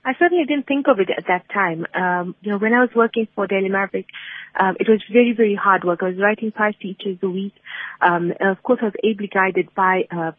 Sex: female